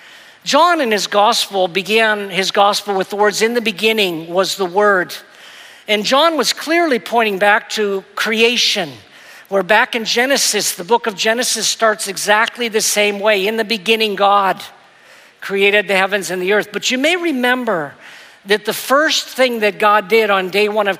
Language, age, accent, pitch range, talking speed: English, 50-69, American, 195-230 Hz, 175 wpm